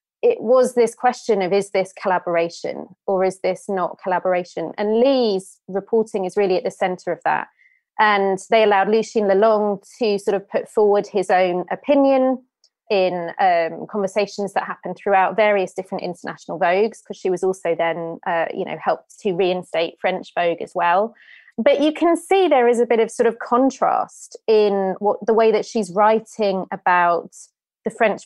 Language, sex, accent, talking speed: English, female, British, 175 wpm